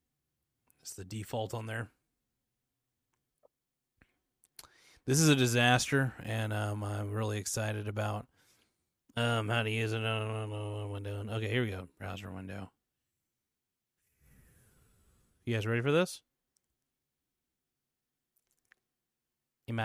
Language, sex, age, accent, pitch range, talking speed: English, male, 30-49, American, 110-135 Hz, 95 wpm